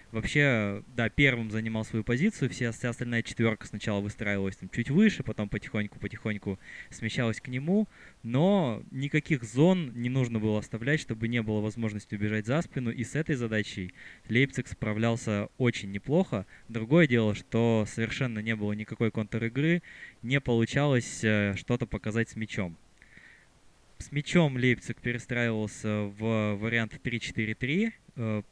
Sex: male